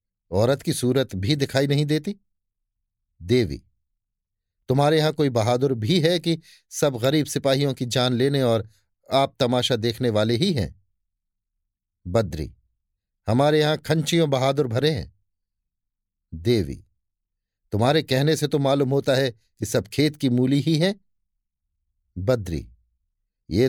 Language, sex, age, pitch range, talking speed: Hindi, male, 50-69, 95-140 Hz, 130 wpm